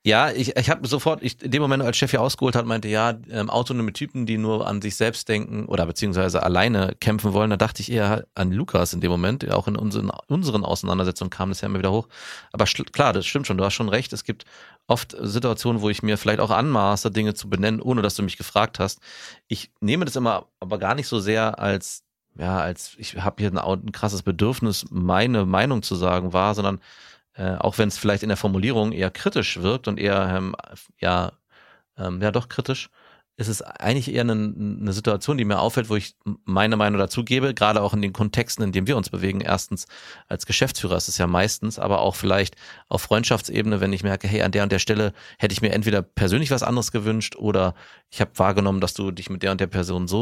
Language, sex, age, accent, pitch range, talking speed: German, male, 30-49, German, 95-115 Hz, 230 wpm